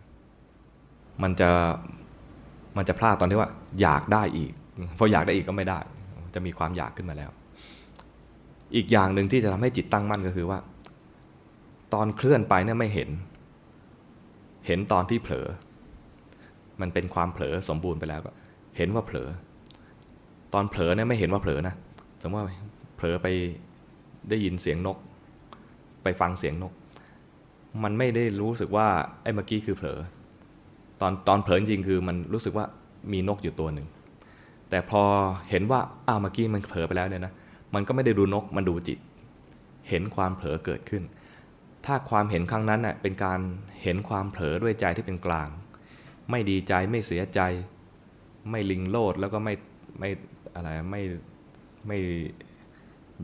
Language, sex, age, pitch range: Thai, male, 20-39, 90-105 Hz